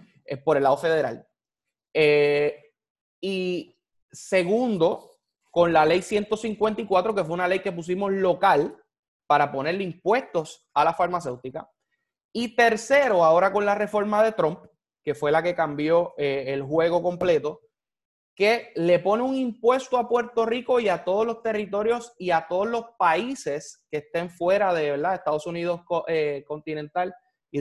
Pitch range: 160-220 Hz